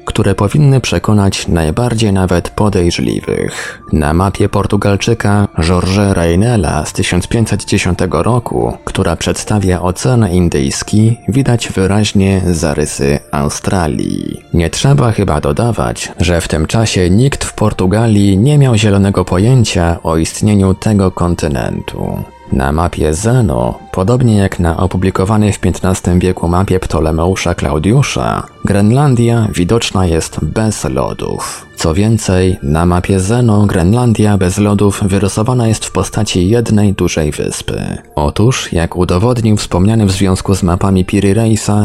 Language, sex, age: Polish, male, 20-39